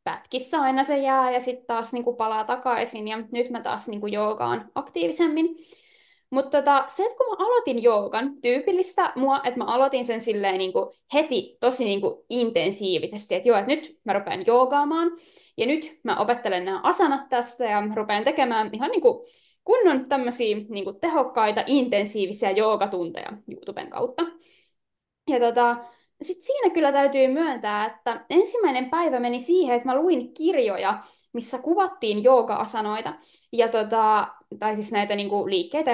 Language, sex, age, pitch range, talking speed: Finnish, female, 20-39, 225-310 Hz, 150 wpm